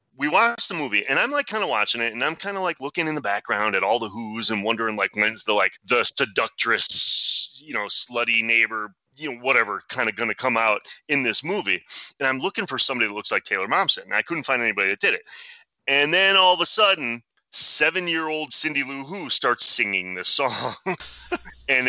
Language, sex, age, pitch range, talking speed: English, male, 30-49, 115-175 Hz, 230 wpm